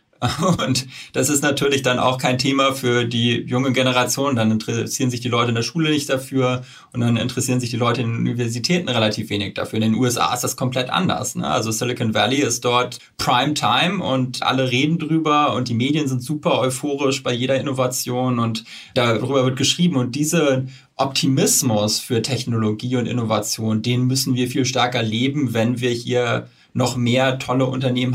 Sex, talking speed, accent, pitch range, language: male, 185 wpm, German, 120-135 Hz, German